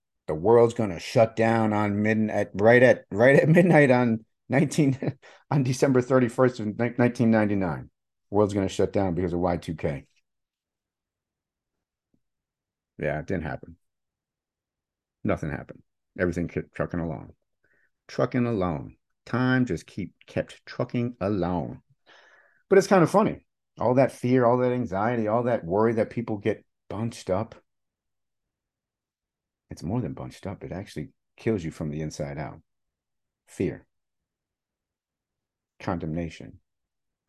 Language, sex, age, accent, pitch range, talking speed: English, male, 50-69, American, 90-125 Hz, 135 wpm